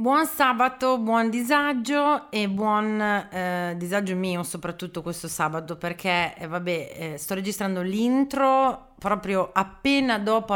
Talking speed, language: 125 wpm, Italian